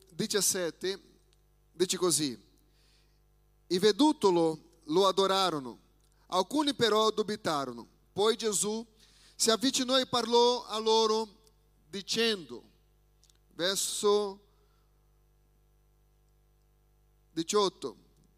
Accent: Brazilian